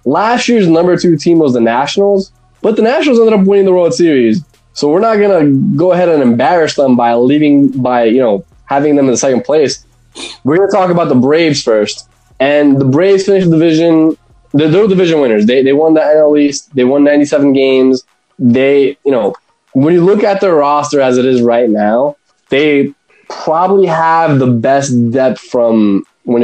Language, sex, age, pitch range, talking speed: English, male, 10-29, 125-170 Hz, 200 wpm